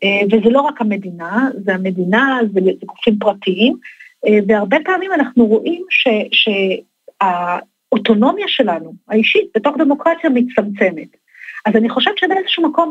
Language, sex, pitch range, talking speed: Hebrew, female, 210-270 Hz, 110 wpm